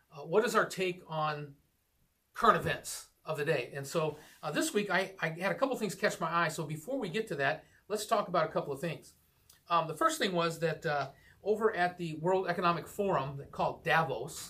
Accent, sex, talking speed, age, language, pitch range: American, male, 225 wpm, 40-59, English, 140-175 Hz